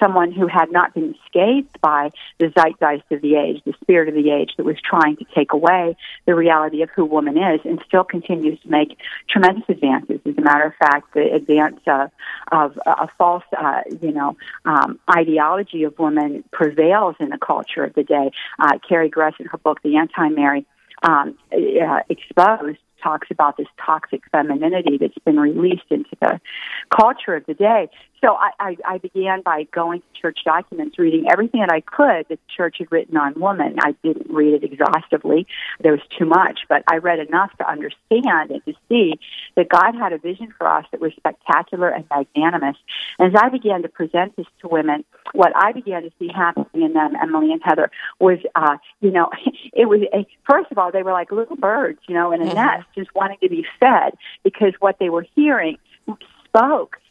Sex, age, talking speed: female, 50-69, 200 wpm